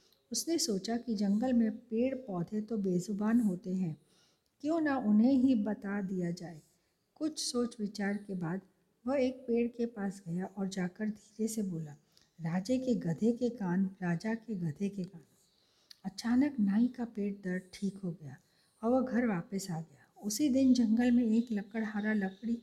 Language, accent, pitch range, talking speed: Hindi, native, 180-240 Hz, 170 wpm